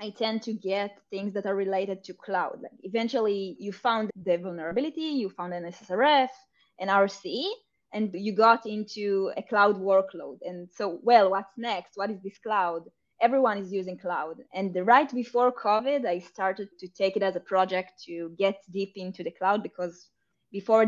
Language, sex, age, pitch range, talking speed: English, female, 20-39, 185-225 Hz, 180 wpm